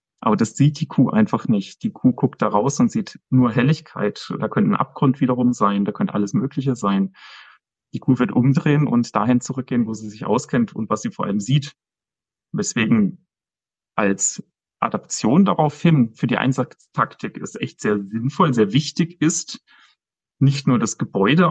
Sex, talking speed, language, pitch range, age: male, 175 wpm, German, 110-150 Hz, 30-49